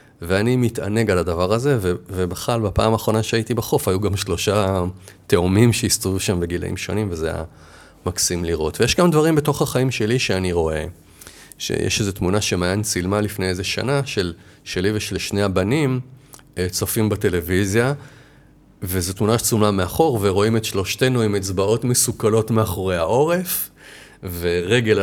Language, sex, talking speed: Hebrew, male, 140 wpm